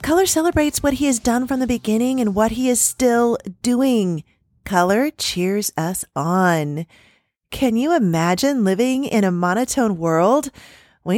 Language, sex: English, female